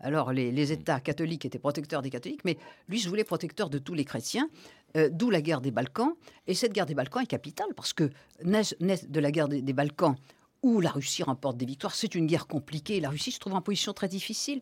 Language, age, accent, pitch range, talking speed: French, 50-69, French, 145-195 Hz, 240 wpm